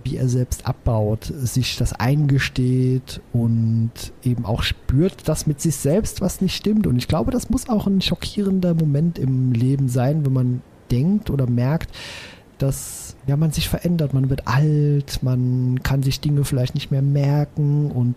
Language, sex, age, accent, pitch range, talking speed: German, male, 40-59, German, 120-145 Hz, 170 wpm